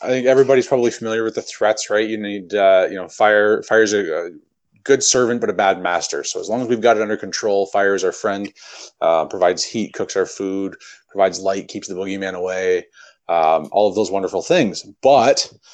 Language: English